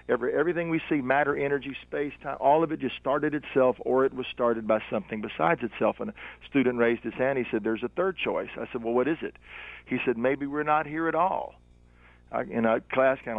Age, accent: 50-69, American